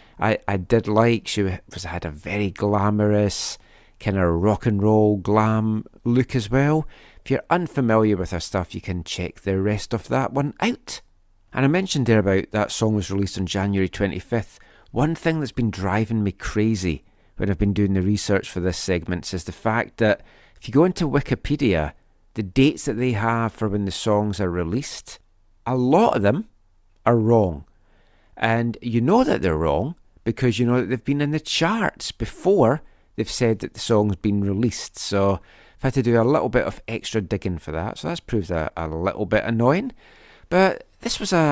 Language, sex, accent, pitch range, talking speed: English, male, British, 95-125 Hz, 195 wpm